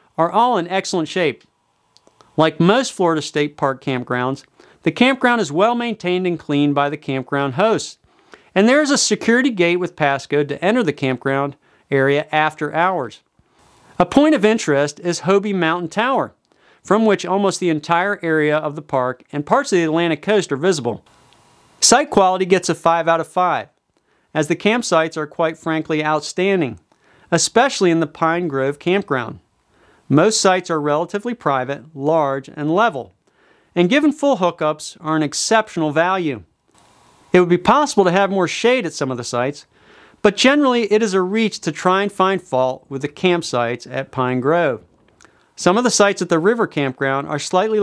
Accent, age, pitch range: American, 40-59, 140-195 Hz